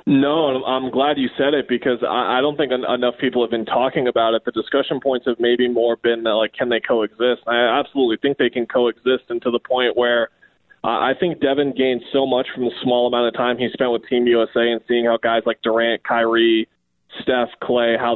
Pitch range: 120-135 Hz